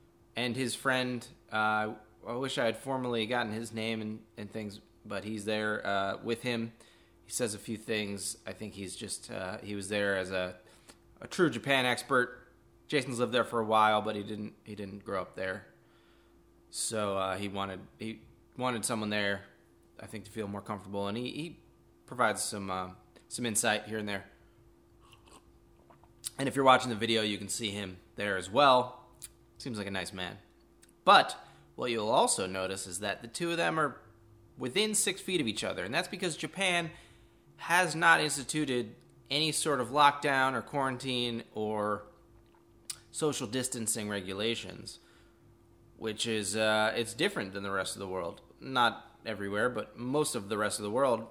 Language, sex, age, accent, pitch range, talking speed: English, male, 20-39, American, 105-125 Hz, 180 wpm